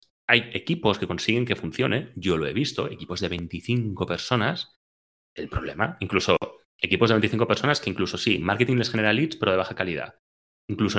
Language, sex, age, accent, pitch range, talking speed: Spanish, male, 30-49, Spanish, 90-115 Hz, 180 wpm